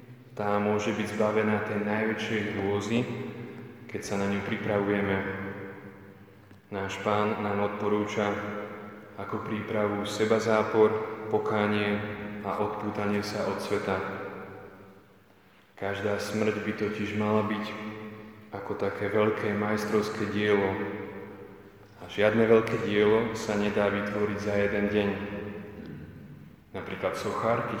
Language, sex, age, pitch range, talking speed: Slovak, male, 20-39, 100-110 Hz, 105 wpm